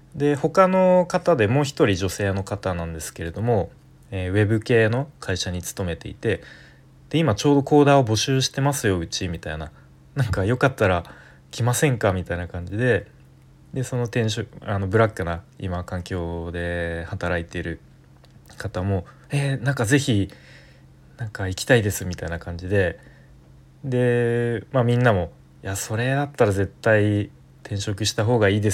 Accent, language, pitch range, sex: native, Japanese, 90-125 Hz, male